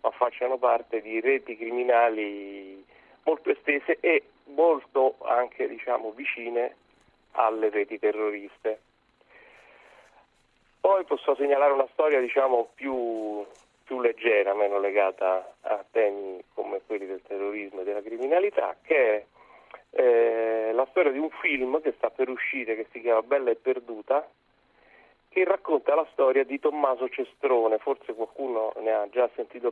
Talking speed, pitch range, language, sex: 135 wpm, 110-150 Hz, Italian, male